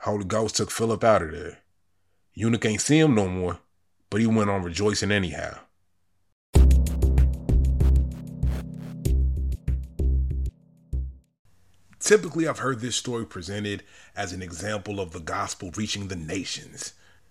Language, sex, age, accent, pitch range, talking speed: English, male, 30-49, American, 90-120 Hz, 120 wpm